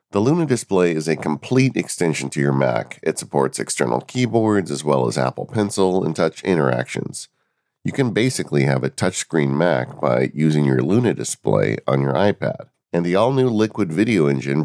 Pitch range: 70-105 Hz